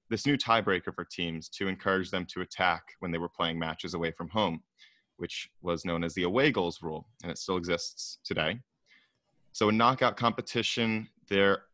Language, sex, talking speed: English, male, 185 wpm